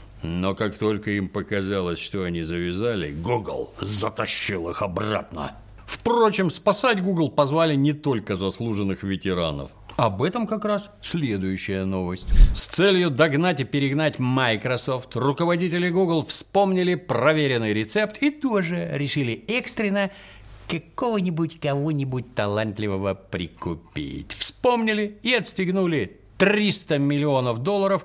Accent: native